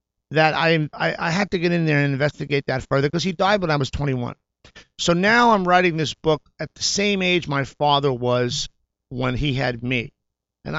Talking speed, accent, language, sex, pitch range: 205 wpm, American, English, male, 135-180 Hz